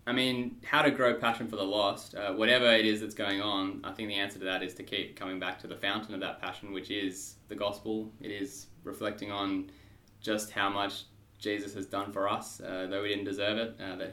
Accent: Australian